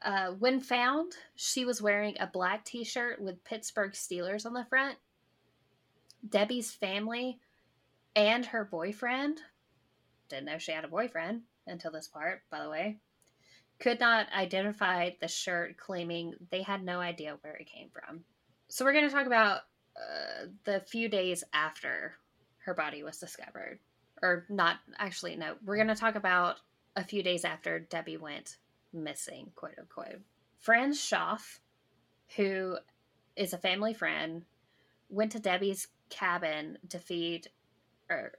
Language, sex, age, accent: English, female, 10-29, American